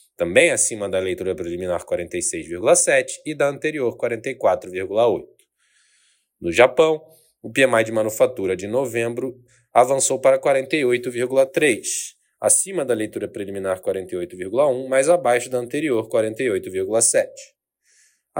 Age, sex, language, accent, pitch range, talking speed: 20-39, male, Portuguese, Brazilian, 115-150 Hz, 100 wpm